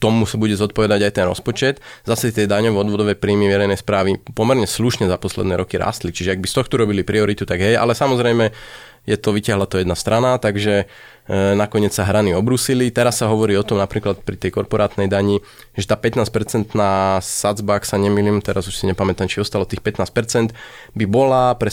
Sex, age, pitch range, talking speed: male, 20-39, 100-120 Hz, 200 wpm